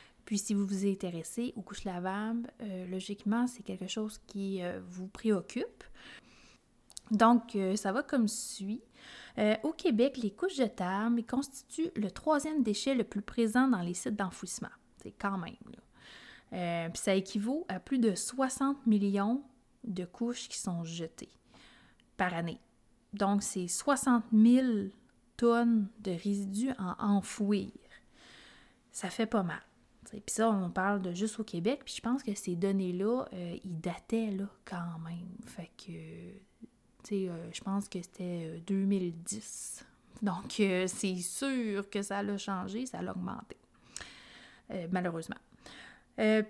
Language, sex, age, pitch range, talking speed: French, female, 30-49, 190-240 Hz, 155 wpm